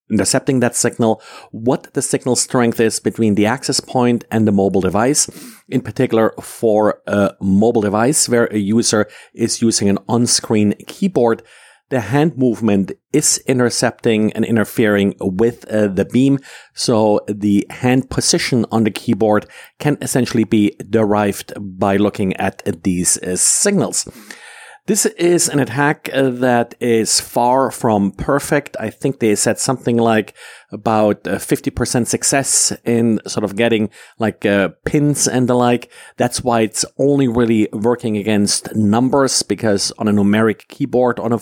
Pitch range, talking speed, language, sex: 105-130 Hz, 145 wpm, English, male